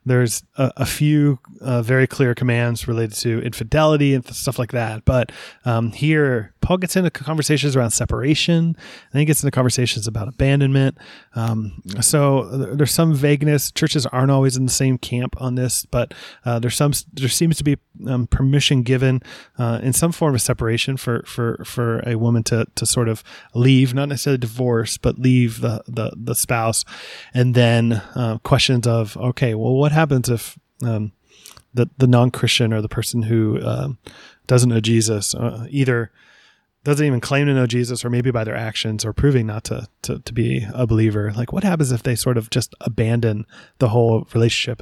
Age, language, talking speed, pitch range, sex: 20-39, English, 190 wpm, 115-135 Hz, male